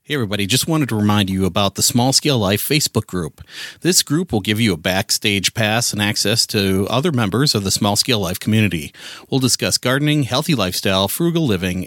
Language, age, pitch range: English, 40-59, 100-140 Hz